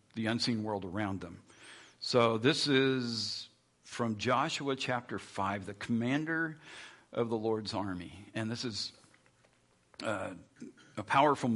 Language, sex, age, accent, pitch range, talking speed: English, male, 50-69, American, 105-125 Hz, 125 wpm